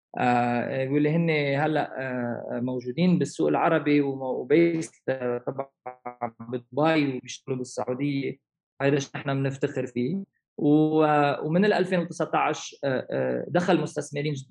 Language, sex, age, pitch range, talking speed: Arabic, male, 20-39, 125-145 Hz, 110 wpm